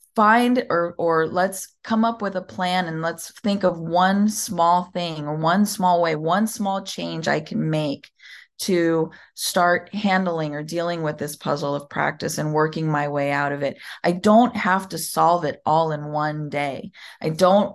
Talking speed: 185 wpm